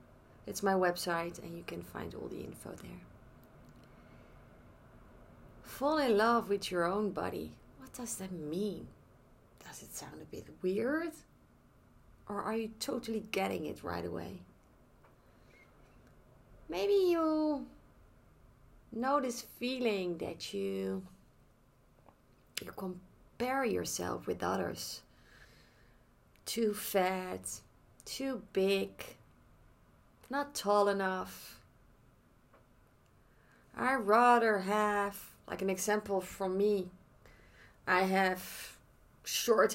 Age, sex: 30-49, female